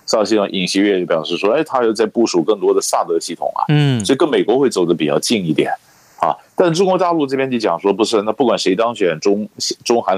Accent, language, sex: native, Chinese, male